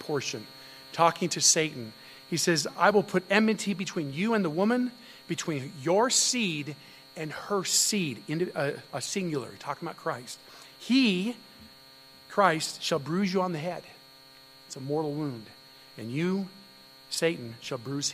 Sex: male